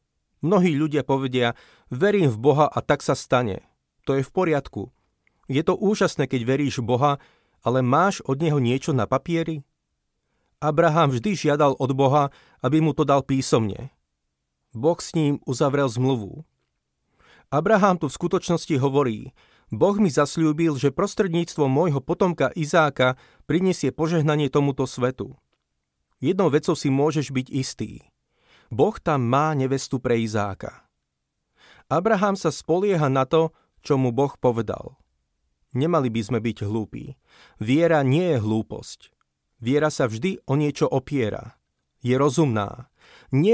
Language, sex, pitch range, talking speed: Slovak, male, 120-155 Hz, 135 wpm